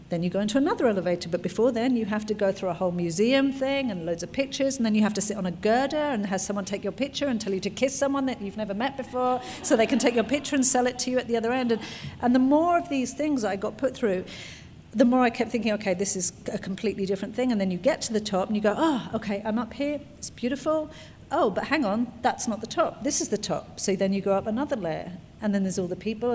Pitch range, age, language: 190-245 Hz, 50-69, English